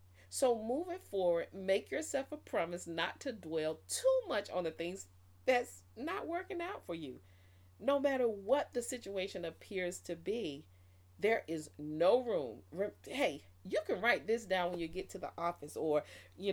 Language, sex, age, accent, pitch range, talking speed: English, female, 40-59, American, 145-220 Hz, 170 wpm